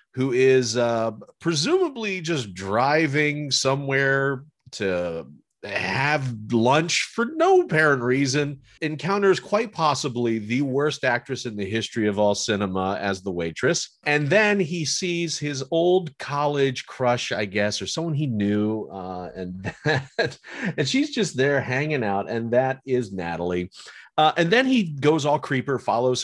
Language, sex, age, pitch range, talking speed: English, male, 40-59, 115-170 Hz, 145 wpm